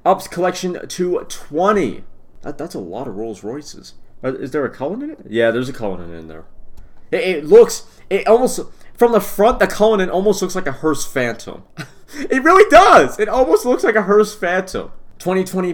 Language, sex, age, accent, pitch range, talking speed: English, male, 30-49, American, 155-205 Hz, 185 wpm